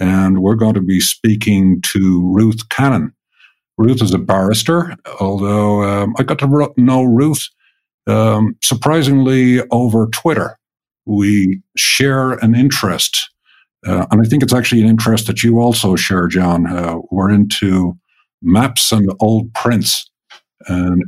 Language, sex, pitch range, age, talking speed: English, male, 95-115 Hz, 50-69, 140 wpm